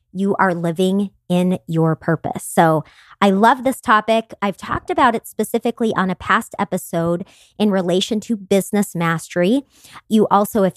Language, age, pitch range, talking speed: English, 30-49, 175-220 Hz, 155 wpm